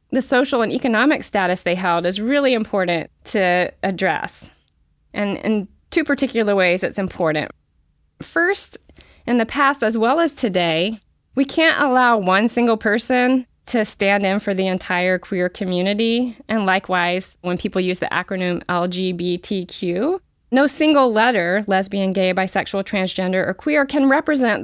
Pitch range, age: 175-235 Hz, 20-39